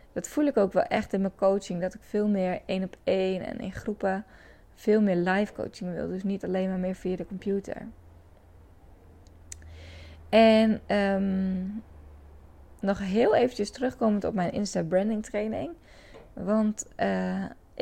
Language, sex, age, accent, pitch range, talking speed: Dutch, female, 20-39, Dutch, 180-220 Hz, 145 wpm